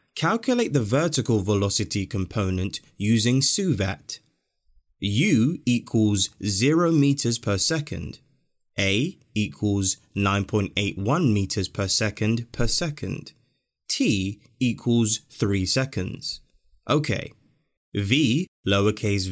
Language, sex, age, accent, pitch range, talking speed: English, male, 20-39, British, 100-140 Hz, 85 wpm